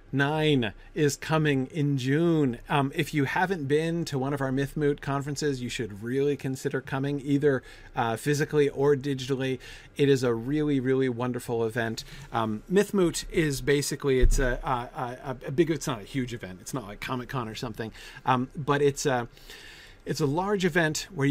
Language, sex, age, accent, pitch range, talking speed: English, male, 40-59, American, 120-145 Hz, 180 wpm